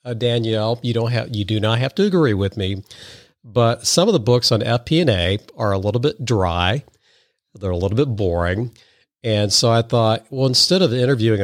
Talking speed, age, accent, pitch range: 200 wpm, 50-69, American, 100-125 Hz